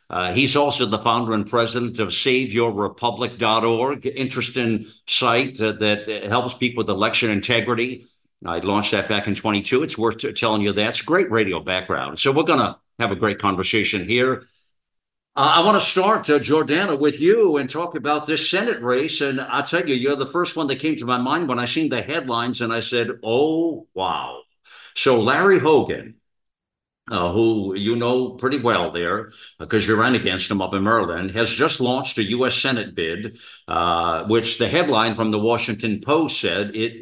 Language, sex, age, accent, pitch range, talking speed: English, male, 60-79, American, 105-125 Hz, 185 wpm